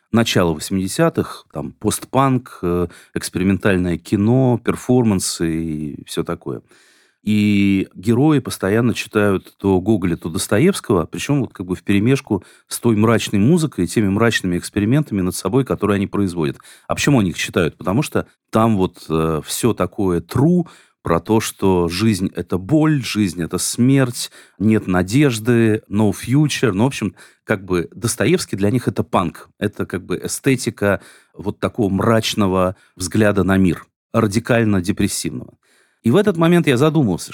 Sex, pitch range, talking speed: male, 90-115 Hz, 145 wpm